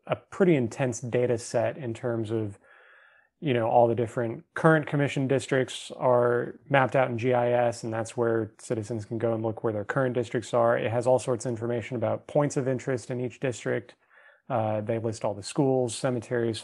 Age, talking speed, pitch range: 30-49, 195 wpm, 115-130 Hz